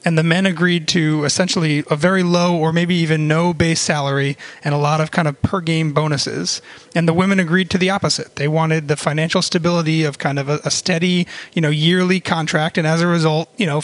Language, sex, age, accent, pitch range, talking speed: English, male, 30-49, American, 160-195 Hz, 220 wpm